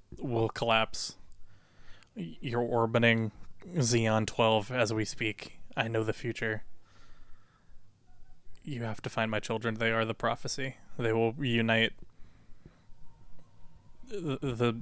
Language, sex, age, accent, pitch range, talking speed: English, male, 20-39, American, 110-125 Hz, 110 wpm